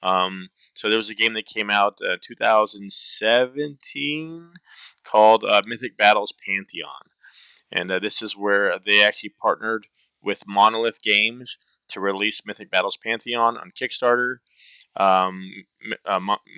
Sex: male